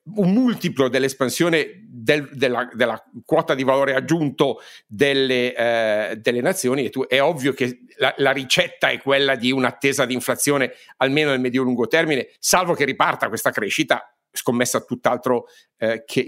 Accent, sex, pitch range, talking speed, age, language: native, male, 120-145 Hz, 135 wpm, 50-69, Italian